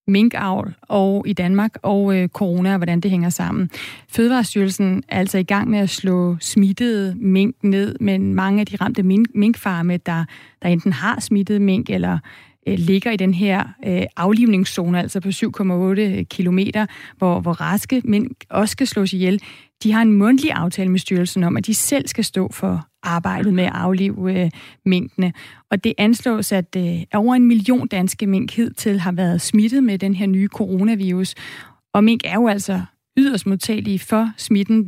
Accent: native